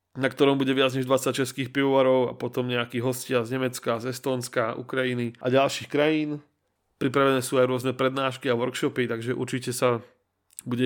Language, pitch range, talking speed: Czech, 120-135 Hz, 170 wpm